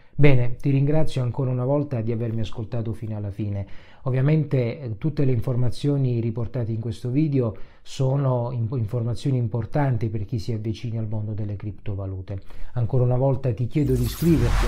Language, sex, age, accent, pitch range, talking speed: Italian, male, 40-59, native, 115-145 Hz, 155 wpm